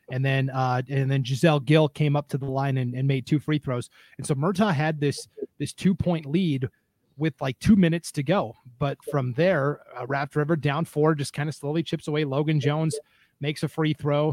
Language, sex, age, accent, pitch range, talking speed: English, male, 30-49, American, 145-165 Hz, 220 wpm